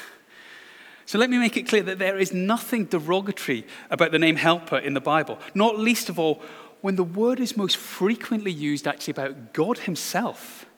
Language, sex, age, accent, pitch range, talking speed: English, male, 30-49, British, 165-250 Hz, 185 wpm